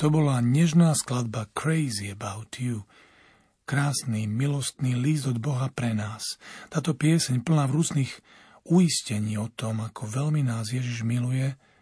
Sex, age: male, 40-59